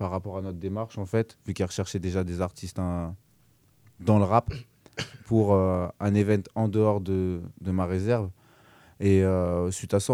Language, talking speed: French, 190 wpm